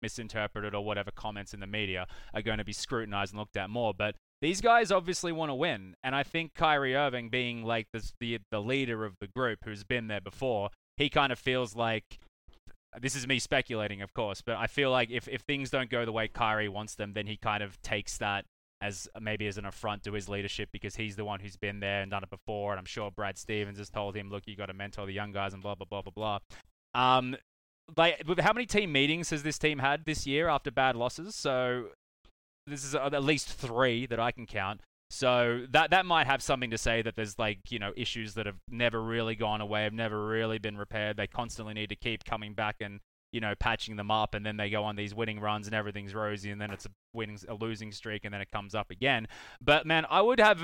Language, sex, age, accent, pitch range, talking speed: English, male, 20-39, Australian, 105-130 Hz, 245 wpm